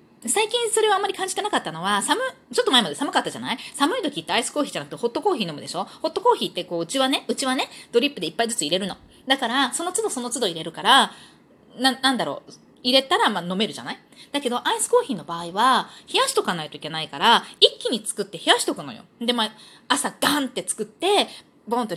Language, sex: Japanese, female